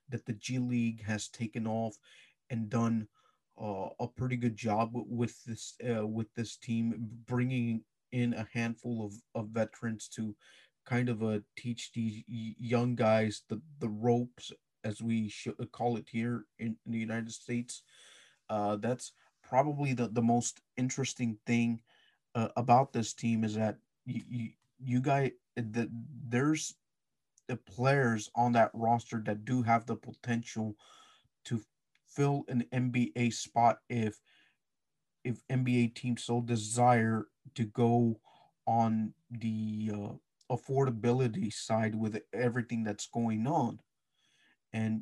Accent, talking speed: American, 140 wpm